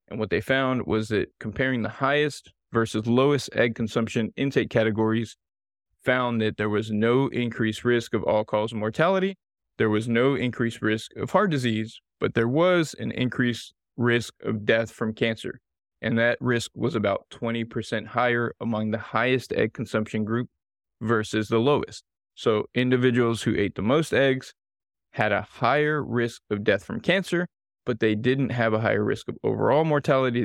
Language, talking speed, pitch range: English, 165 wpm, 110-130 Hz